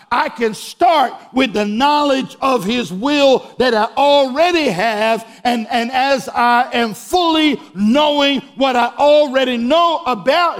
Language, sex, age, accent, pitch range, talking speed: English, male, 50-69, American, 240-295 Hz, 140 wpm